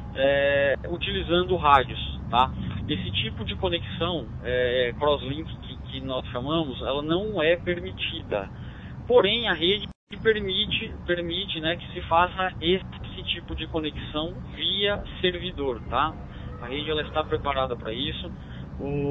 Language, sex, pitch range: Portuguese, male, 135-165 Hz